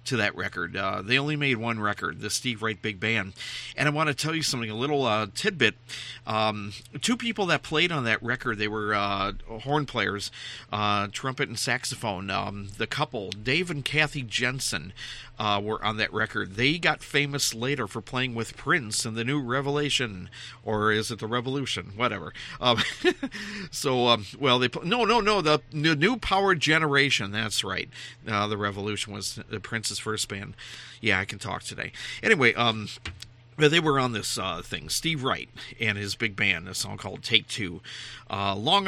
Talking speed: 190 wpm